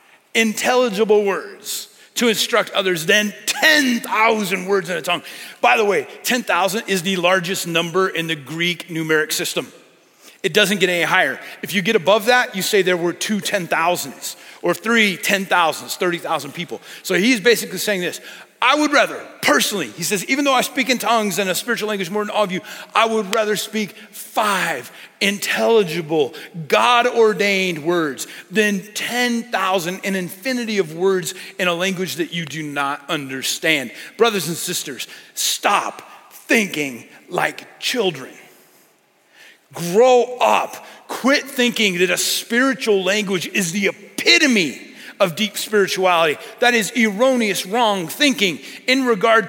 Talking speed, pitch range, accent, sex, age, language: 145 wpm, 180-230 Hz, American, male, 40-59, English